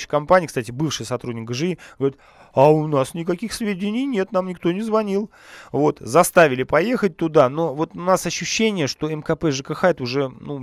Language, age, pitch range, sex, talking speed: Russian, 30-49, 135-175 Hz, male, 175 wpm